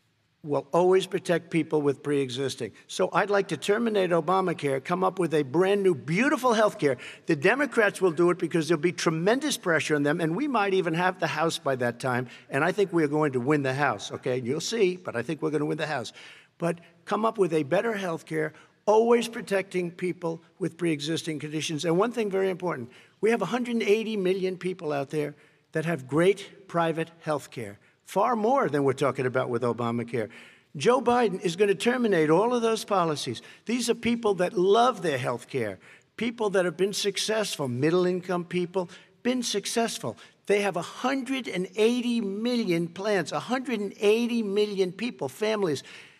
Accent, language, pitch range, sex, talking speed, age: American, Finnish, 155-205 Hz, male, 185 wpm, 50-69